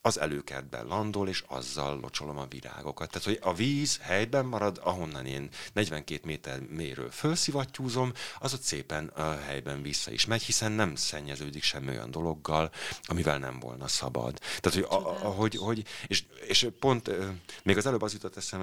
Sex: male